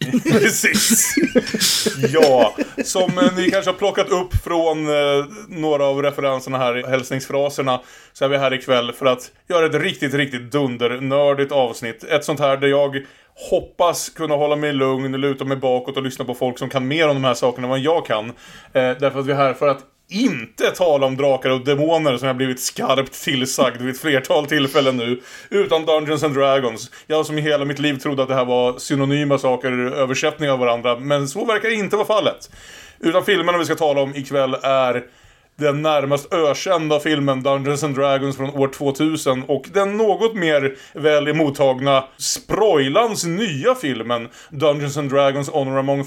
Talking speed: 185 wpm